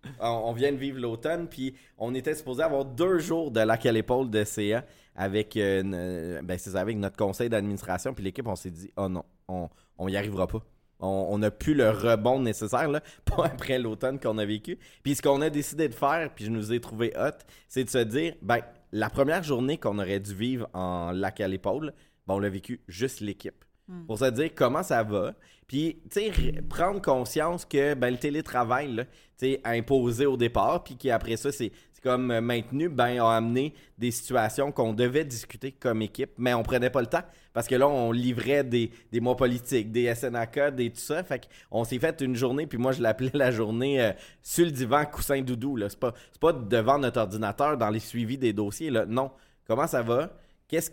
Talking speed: 210 wpm